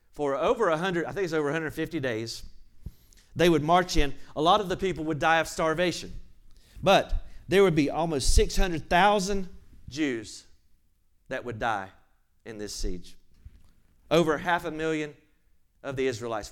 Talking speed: 155 wpm